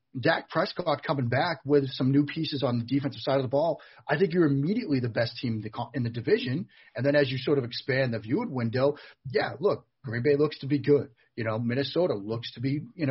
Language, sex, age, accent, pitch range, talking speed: English, male, 40-59, American, 115-145 Hz, 230 wpm